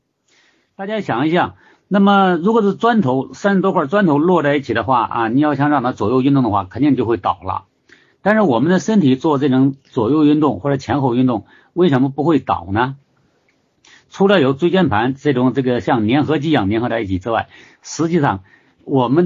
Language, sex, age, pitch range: Chinese, male, 50-69, 115-160 Hz